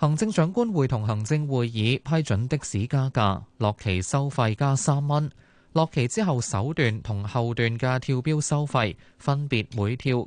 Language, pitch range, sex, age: Chinese, 110-155 Hz, male, 20-39